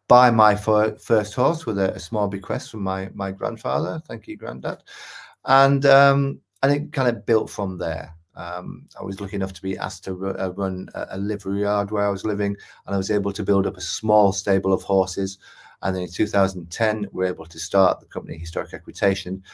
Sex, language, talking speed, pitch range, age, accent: male, English, 220 wpm, 90-110 Hz, 30-49, British